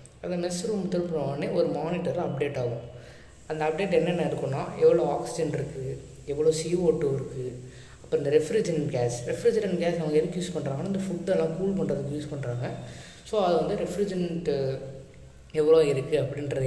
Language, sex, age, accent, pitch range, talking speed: Tamil, female, 20-39, native, 130-165 Hz, 150 wpm